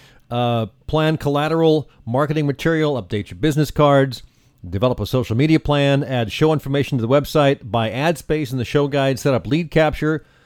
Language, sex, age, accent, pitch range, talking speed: English, male, 50-69, American, 120-145 Hz, 180 wpm